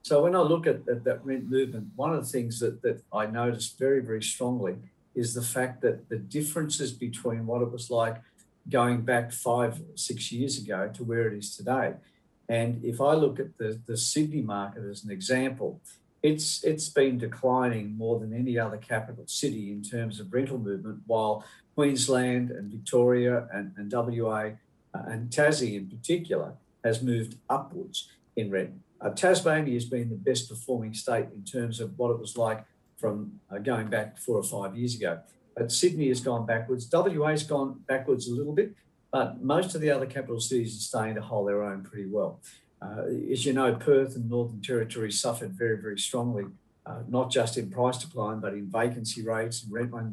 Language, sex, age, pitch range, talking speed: English, male, 50-69, 110-130 Hz, 195 wpm